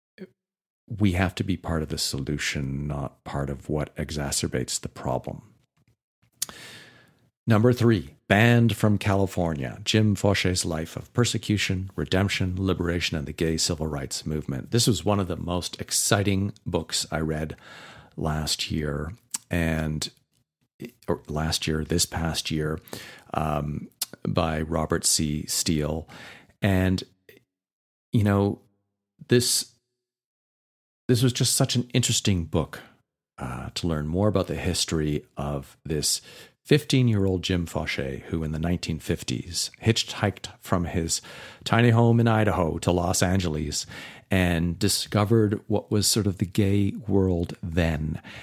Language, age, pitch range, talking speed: English, 50-69, 80-110 Hz, 130 wpm